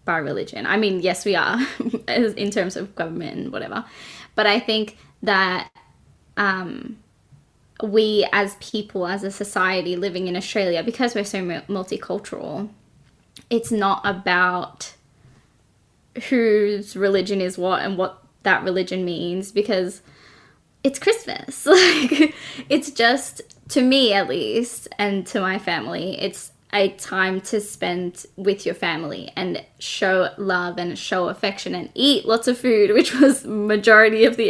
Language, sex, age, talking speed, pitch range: English, female, 10-29, 145 wpm, 185-230 Hz